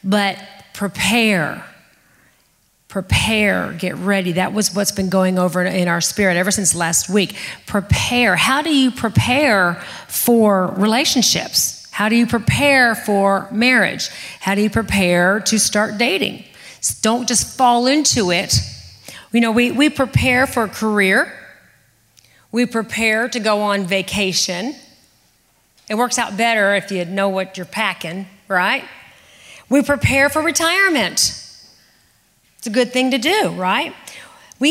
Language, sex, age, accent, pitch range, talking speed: English, female, 40-59, American, 190-250 Hz, 140 wpm